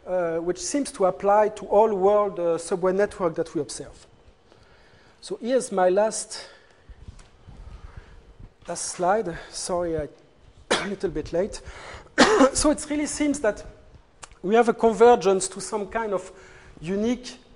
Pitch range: 170-210 Hz